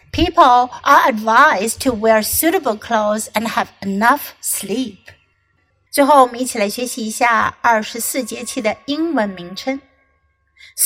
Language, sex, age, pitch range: Chinese, female, 50-69, 220-310 Hz